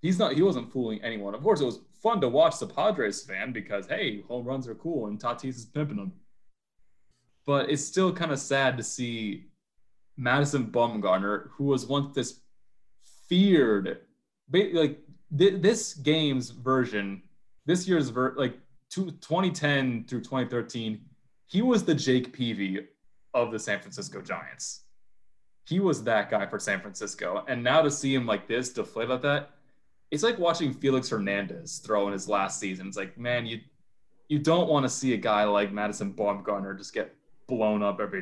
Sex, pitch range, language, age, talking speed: male, 115-155 Hz, English, 20-39, 170 wpm